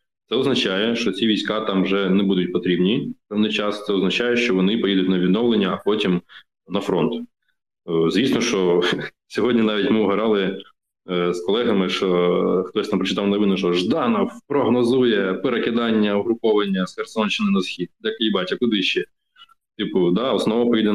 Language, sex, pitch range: Ukrainian, male, 90-105 Hz